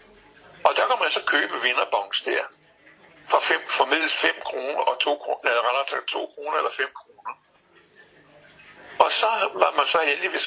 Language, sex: Danish, male